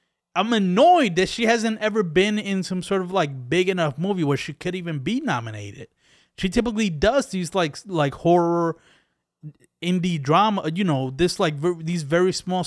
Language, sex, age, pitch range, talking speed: English, male, 20-39, 140-185 Hz, 180 wpm